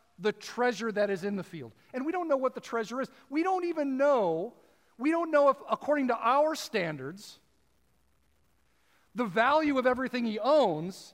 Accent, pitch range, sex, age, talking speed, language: American, 200-280 Hz, male, 40-59, 180 wpm, English